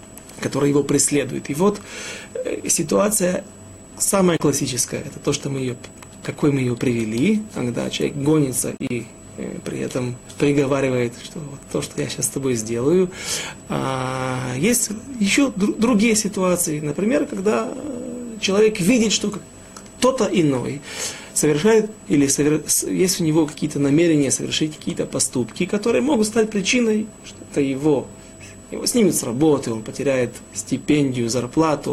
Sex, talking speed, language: male, 120 wpm, Russian